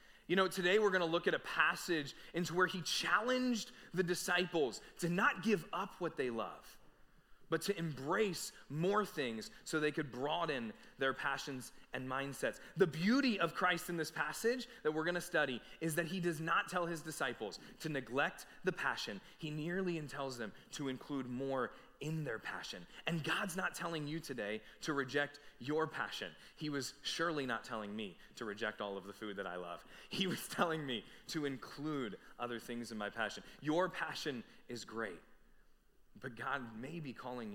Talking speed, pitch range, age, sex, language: 185 wpm, 135-185 Hz, 20-39, male, English